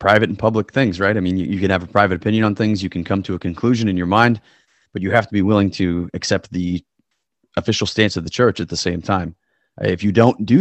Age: 30-49